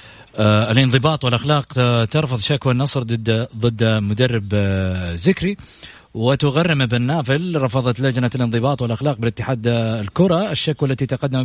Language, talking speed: Arabic, 105 wpm